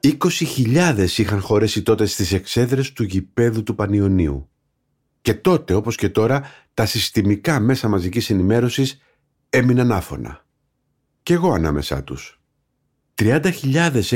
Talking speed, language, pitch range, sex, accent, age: 115 wpm, Greek, 100-140 Hz, male, native, 50-69